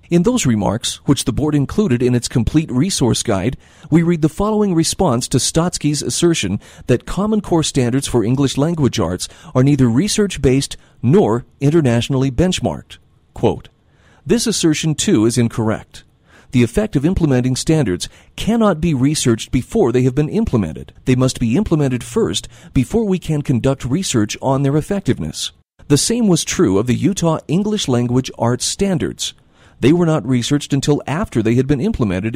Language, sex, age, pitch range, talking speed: English, male, 40-59, 120-165 Hz, 160 wpm